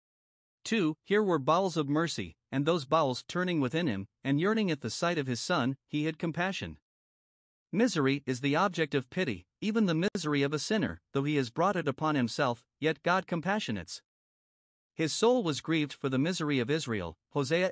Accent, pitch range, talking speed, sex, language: American, 135-175 Hz, 185 wpm, male, English